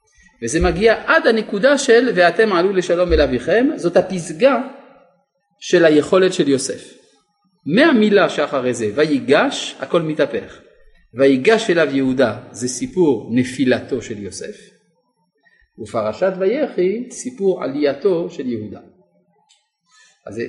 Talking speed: 110 wpm